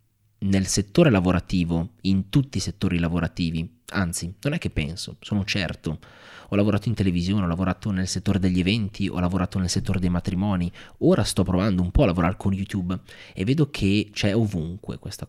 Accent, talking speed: native, 180 wpm